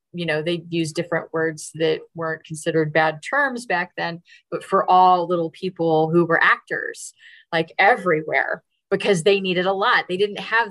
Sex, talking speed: female, 175 wpm